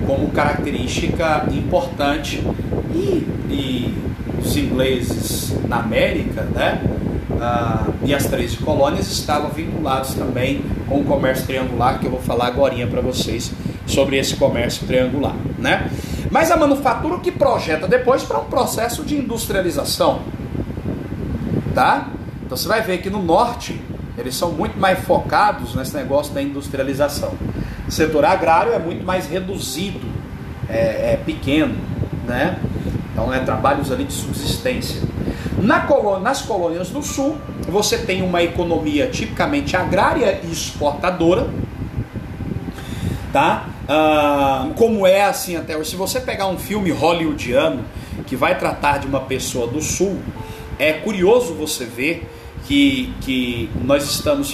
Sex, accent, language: male, Brazilian, Portuguese